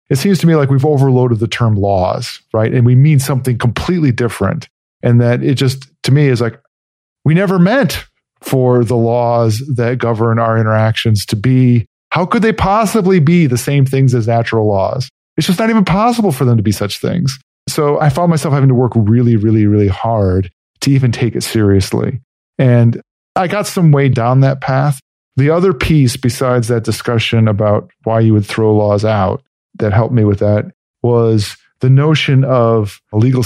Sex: male